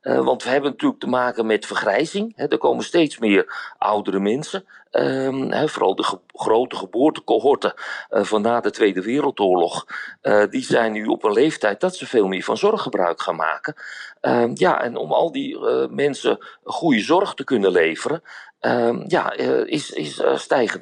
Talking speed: 155 wpm